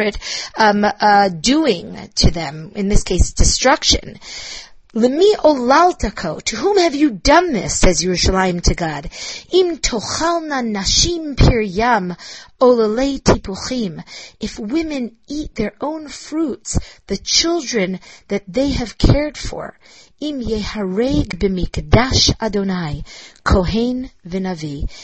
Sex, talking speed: female, 100 wpm